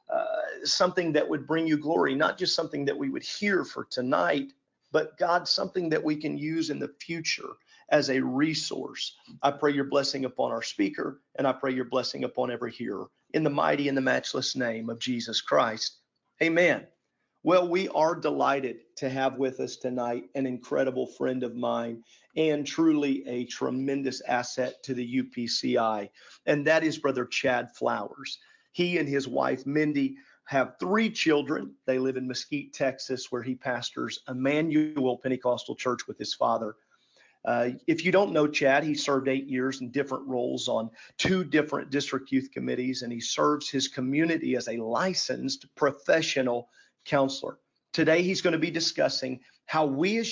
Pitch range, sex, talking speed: 130-160 Hz, male, 170 wpm